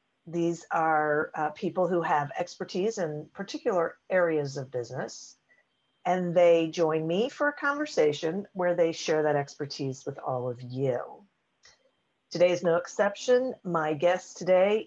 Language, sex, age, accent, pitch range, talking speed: English, female, 50-69, American, 155-210 Hz, 140 wpm